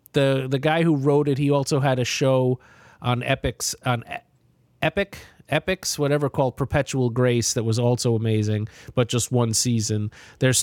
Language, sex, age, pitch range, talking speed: English, male, 30-49, 125-150 Hz, 165 wpm